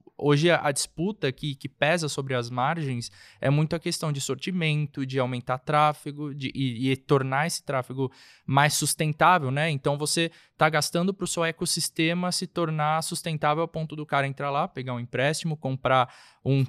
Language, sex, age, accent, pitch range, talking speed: Portuguese, male, 20-39, Brazilian, 135-165 Hz, 175 wpm